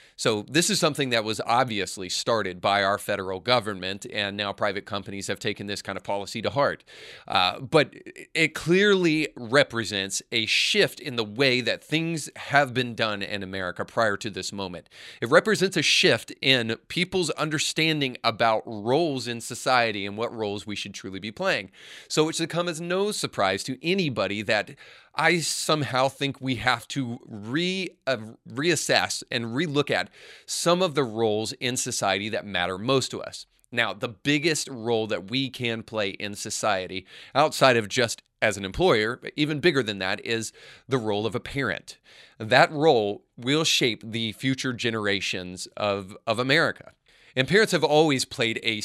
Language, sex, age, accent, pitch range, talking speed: English, male, 30-49, American, 105-150 Hz, 170 wpm